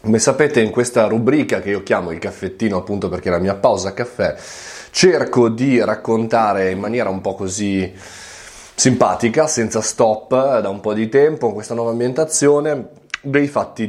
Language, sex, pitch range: Italian, male, 90-115 Hz